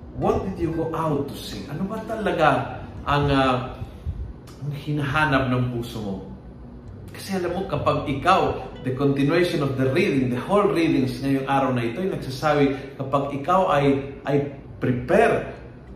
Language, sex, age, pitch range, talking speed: Filipino, male, 40-59, 125-170 Hz, 155 wpm